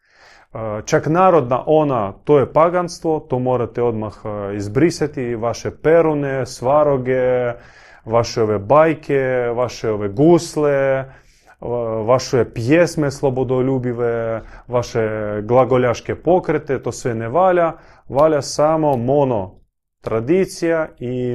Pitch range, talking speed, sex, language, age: 110-145 Hz, 95 wpm, male, Croatian, 30-49